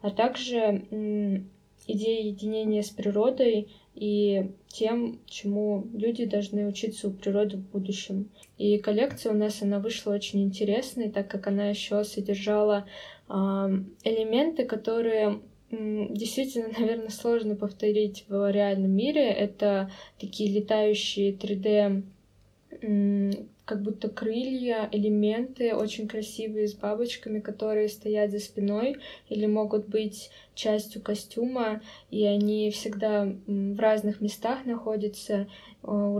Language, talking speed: Russian, 115 wpm